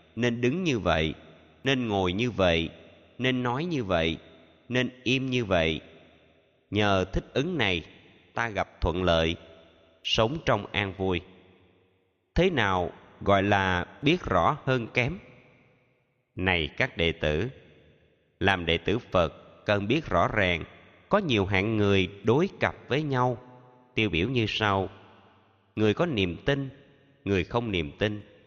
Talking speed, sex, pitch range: 145 wpm, male, 90-125 Hz